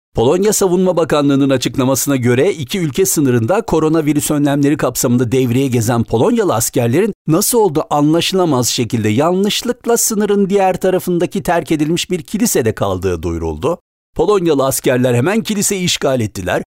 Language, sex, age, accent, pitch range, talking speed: Turkish, male, 60-79, native, 115-170 Hz, 125 wpm